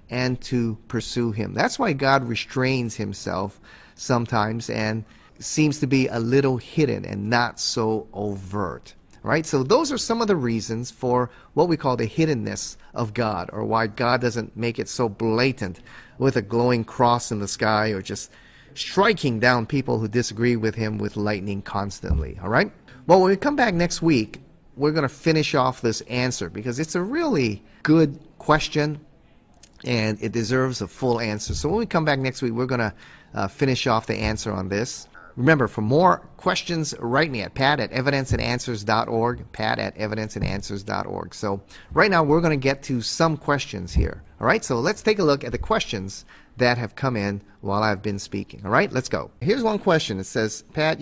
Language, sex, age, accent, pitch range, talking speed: English, male, 30-49, American, 110-145 Hz, 190 wpm